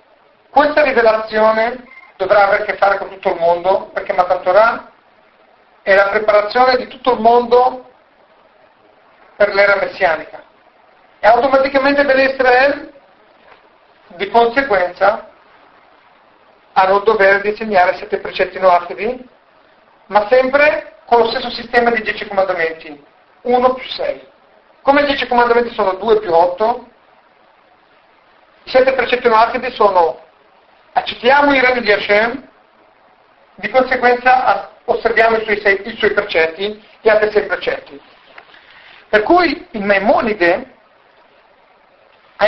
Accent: native